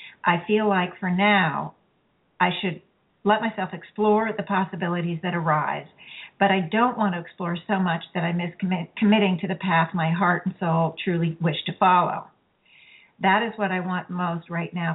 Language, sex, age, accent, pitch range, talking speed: English, female, 50-69, American, 170-200 Hz, 180 wpm